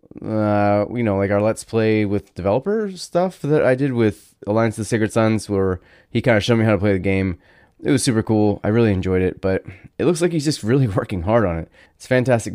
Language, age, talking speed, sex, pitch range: English, 20-39, 240 wpm, male, 95-125 Hz